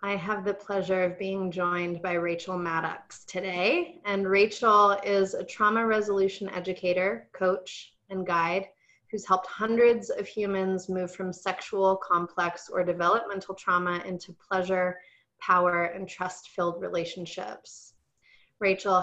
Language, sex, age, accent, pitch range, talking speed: English, female, 30-49, American, 175-200 Hz, 125 wpm